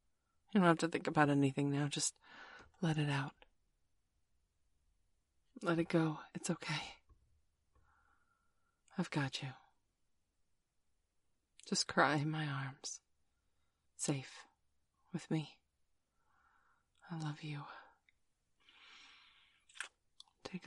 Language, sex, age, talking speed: English, female, 30-49, 95 wpm